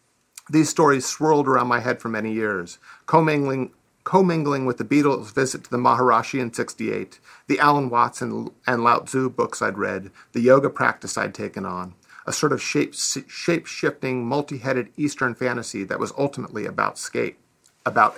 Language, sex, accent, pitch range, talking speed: English, male, American, 115-140 Hz, 160 wpm